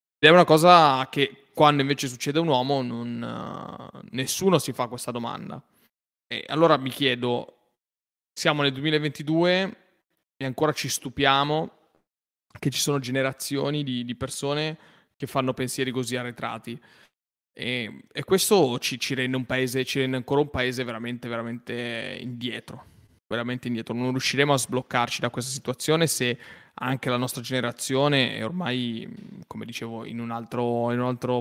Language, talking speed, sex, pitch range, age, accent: Italian, 155 wpm, male, 120-145 Hz, 20-39, native